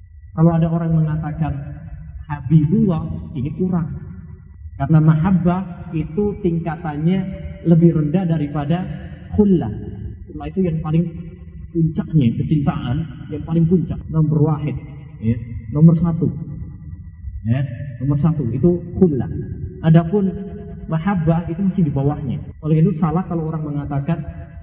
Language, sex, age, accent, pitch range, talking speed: Indonesian, male, 30-49, native, 115-165 Hz, 115 wpm